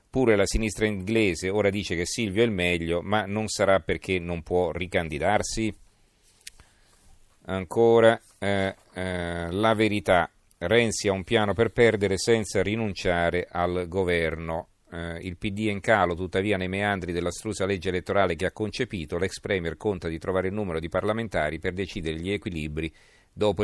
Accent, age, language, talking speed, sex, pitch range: native, 40-59, Italian, 160 wpm, male, 85-105 Hz